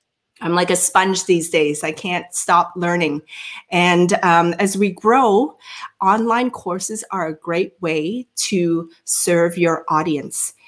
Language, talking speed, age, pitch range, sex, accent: English, 140 wpm, 40-59, 170-225 Hz, female, American